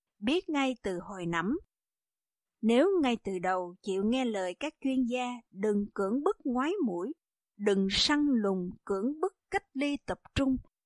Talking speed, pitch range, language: 160 wpm, 205-290 Hz, Vietnamese